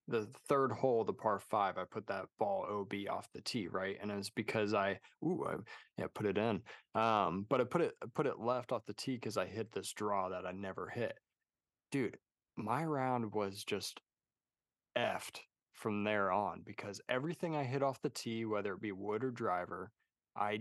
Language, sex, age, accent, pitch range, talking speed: English, male, 20-39, American, 100-115 Hz, 205 wpm